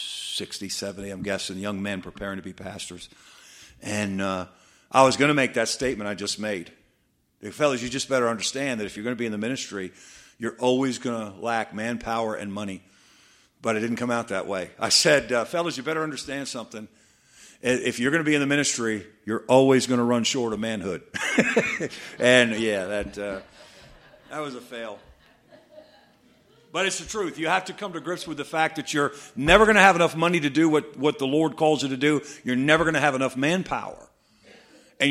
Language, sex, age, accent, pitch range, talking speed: English, male, 50-69, American, 110-160 Hz, 210 wpm